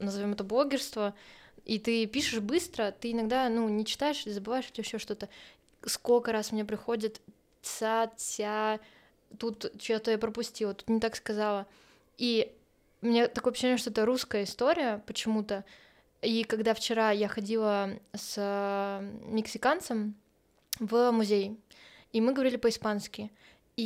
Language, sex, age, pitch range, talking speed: Russian, female, 20-39, 210-235 Hz, 140 wpm